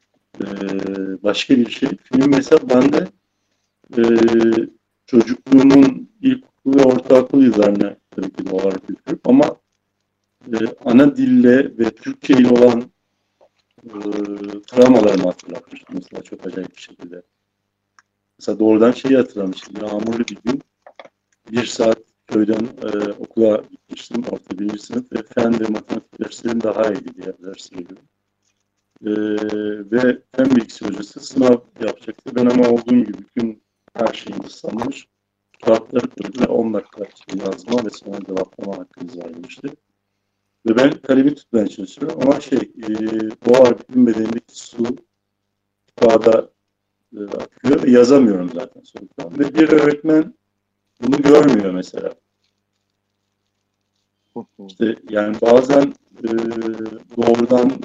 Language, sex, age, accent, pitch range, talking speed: Turkish, male, 50-69, native, 100-125 Hz, 120 wpm